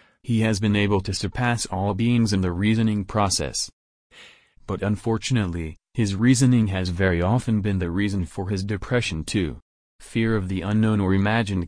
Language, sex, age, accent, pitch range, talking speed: English, male, 30-49, American, 95-115 Hz, 165 wpm